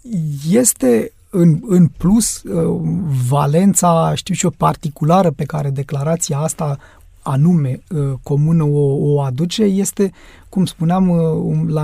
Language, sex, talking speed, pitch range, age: Romanian, male, 105 wpm, 140-165 Hz, 30-49